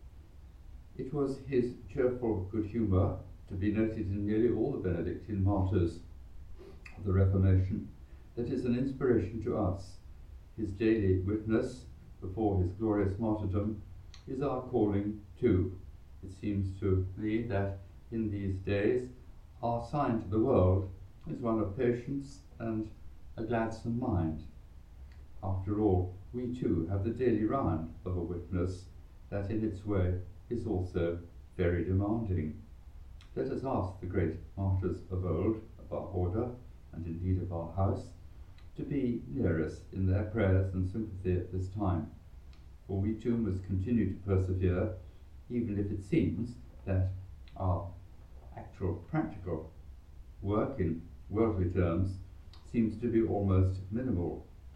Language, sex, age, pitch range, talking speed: English, male, 60-79, 85-110 Hz, 140 wpm